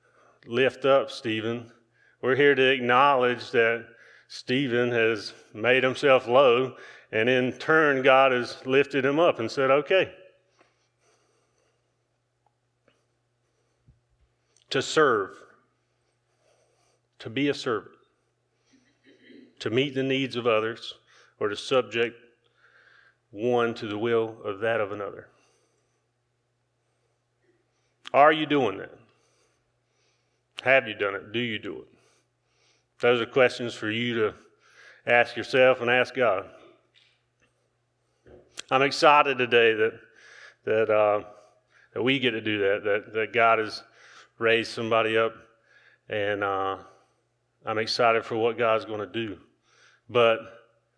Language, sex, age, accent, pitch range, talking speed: English, male, 40-59, American, 115-130 Hz, 120 wpm